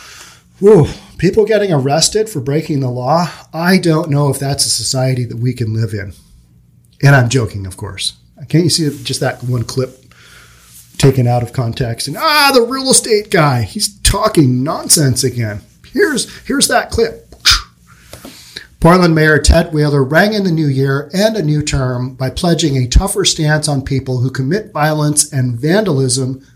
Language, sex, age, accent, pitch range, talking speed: English, male, 40-59, American, 125-170 Hz, 170 wpm